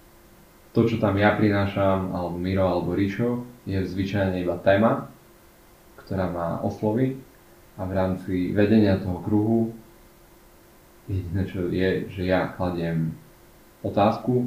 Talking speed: 120 wpm